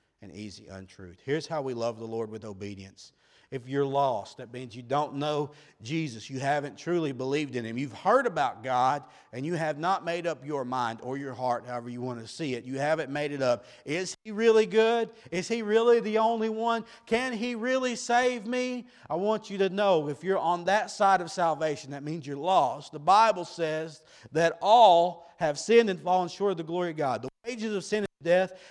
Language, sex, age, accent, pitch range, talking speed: English, male, 40-59, American, 140-220 Hz, 215 wpm